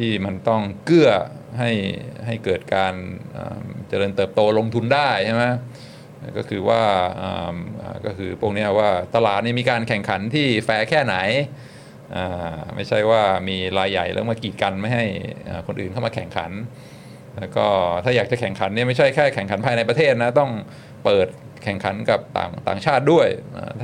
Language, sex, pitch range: Thai, male, 100-120 Hz